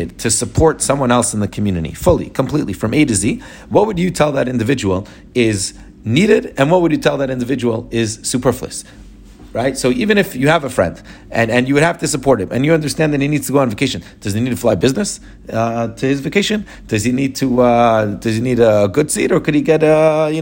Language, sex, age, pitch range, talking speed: English, male, 30-49, 110-145 Hz, 245 wpm